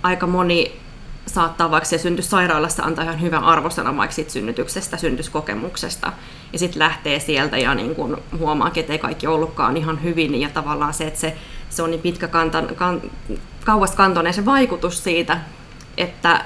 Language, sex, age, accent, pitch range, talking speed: Finnish, female, 20-39, native, 155-175 Hz, 155 wpm